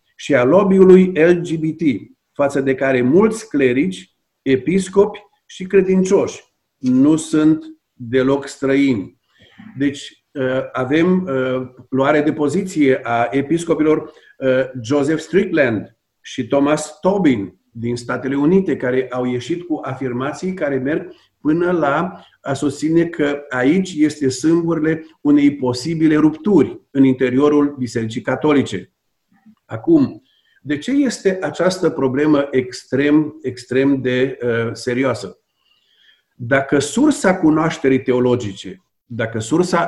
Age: 50-69